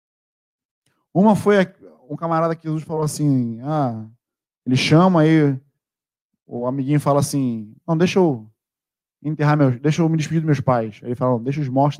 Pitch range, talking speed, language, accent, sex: 130-170 Hz, 180 wpm, Portuguese, Brazilian, male